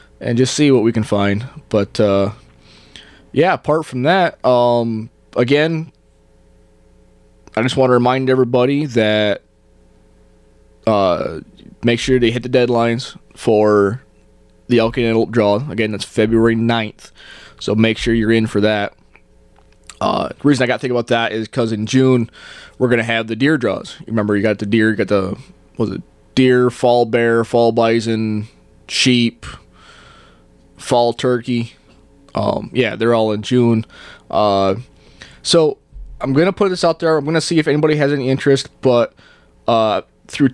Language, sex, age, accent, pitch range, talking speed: English, male, 20-39, American, 110-135 Hz, 165 wpm